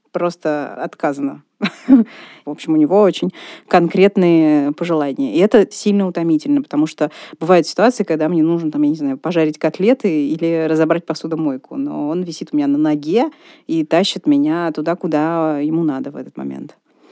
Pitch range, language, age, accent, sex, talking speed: 160-230 Hz, Russian, 20-39, native, female, 160 wpm